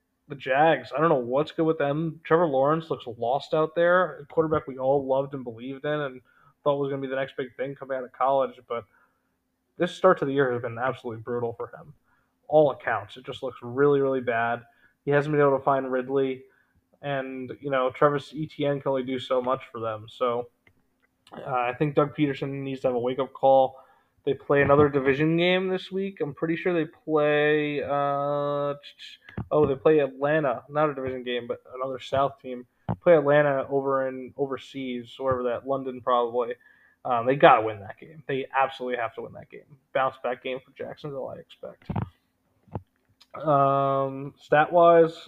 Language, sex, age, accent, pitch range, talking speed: English, male, 20-39, American, 130-155 Hz, 190 wpm